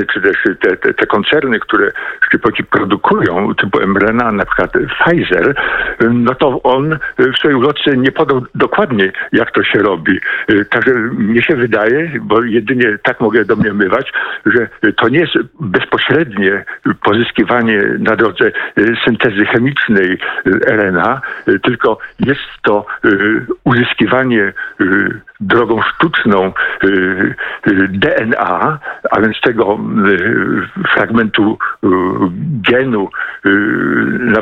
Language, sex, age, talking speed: Polish, male, 50-69, 110 wpm